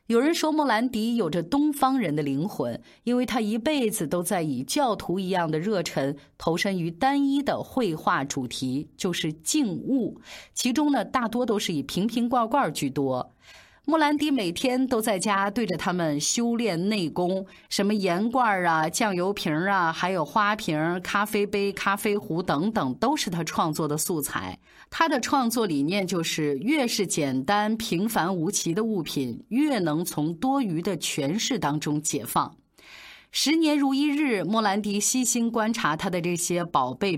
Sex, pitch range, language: female, 165-250 Hz, Chinese